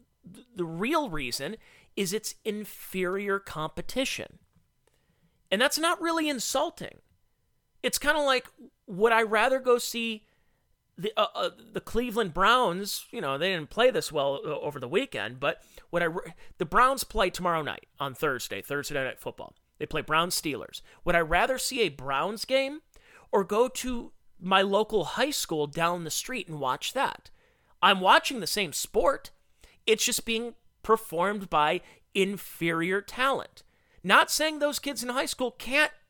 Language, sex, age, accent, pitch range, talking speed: English, male, 30-49, American, 175-255 Hz, 160 wpm